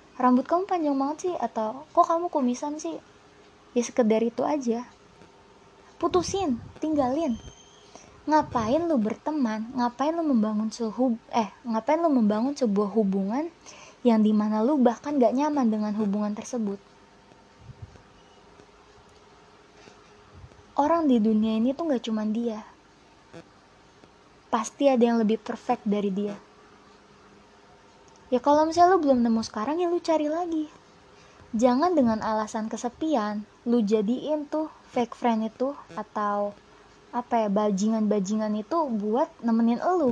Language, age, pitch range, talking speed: Indonesian, 20-39, 215-280 Hz, 125 wpm